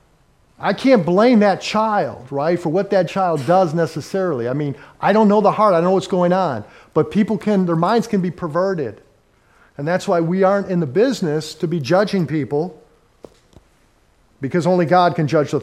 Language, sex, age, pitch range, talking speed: English, male, 50-69, 155-205 Hz, 195 wpm